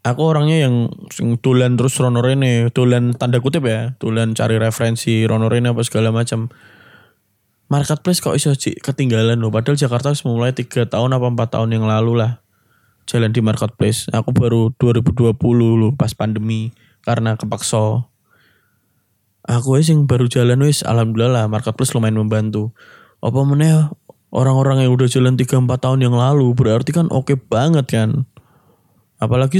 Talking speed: 150 wpm